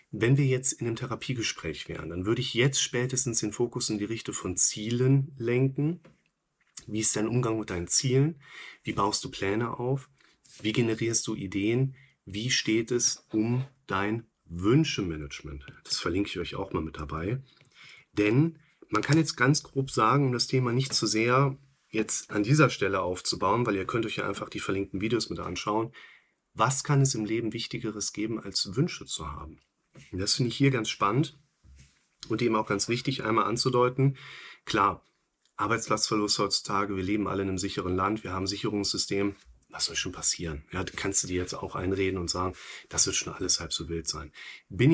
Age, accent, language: 30-49, German, German